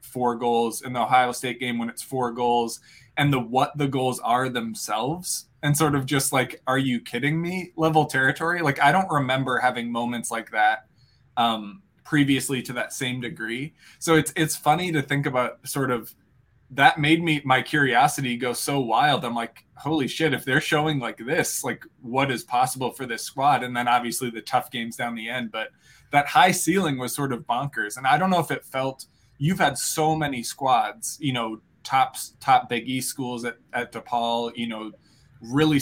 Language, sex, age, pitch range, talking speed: English, male, 20-39, 120-145 Hz, 200 wpm